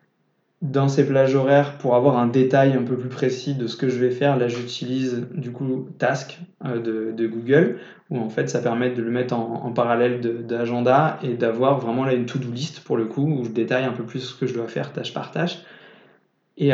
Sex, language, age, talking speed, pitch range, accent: male, French, 20-39, 225 wpm, 120-135 Hz, French